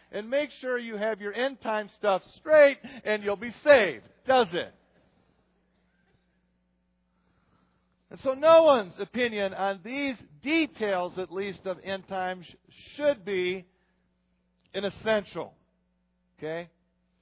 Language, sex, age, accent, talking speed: English, male, 50-69, American, 120 wpm